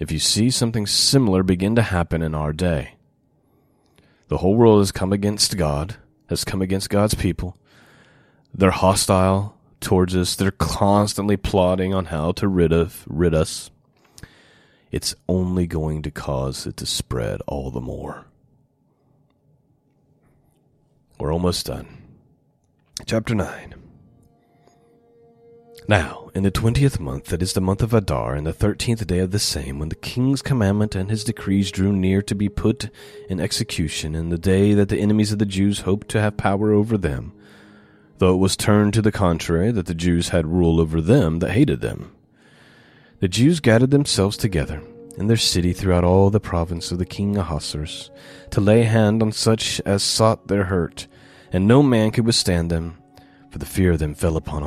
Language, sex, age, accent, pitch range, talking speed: English, male, 30-49, American, 85-110 Hz, 170 wpm